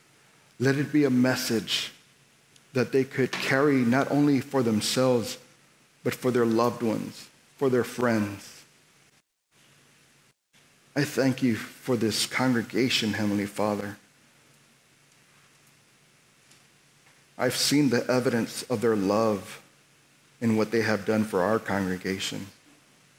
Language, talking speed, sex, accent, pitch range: English, 115 wpm, male, American, 110-130 Hz